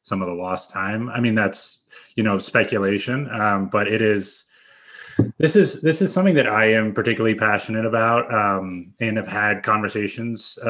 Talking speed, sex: 175 wpm, male